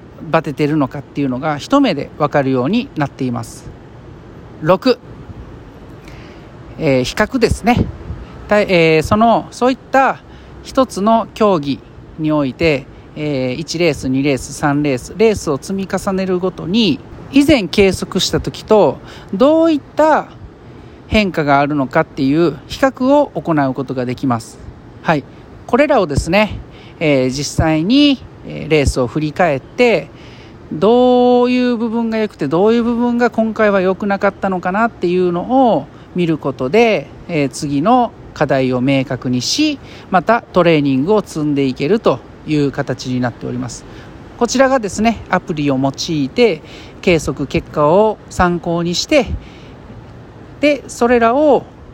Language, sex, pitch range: Japanese, male, 140-225 Hz